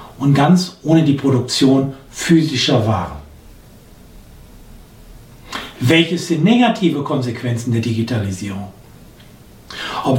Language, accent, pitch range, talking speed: German, German, 125-165 Hz, 80 wpm